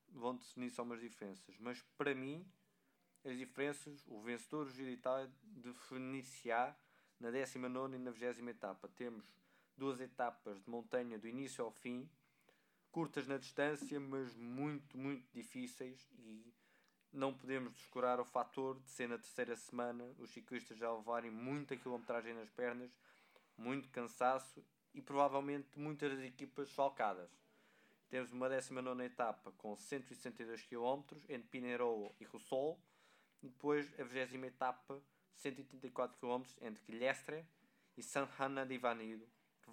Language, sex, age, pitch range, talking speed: Portuguese, male, 20-39, 120-140 Hz, 135 wpm